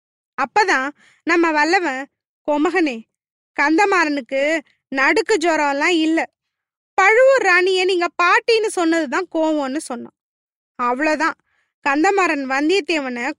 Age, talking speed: 20-39, 80 wpm